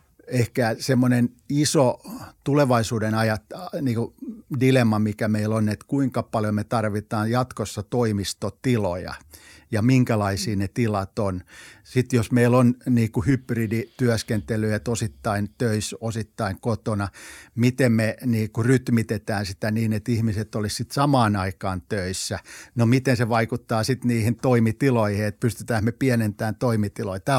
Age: 50-69